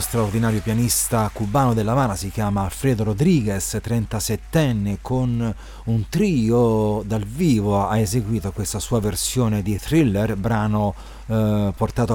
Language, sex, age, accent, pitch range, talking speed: Italian, male, 30-49, native, 105-125 Hz, 125 wpm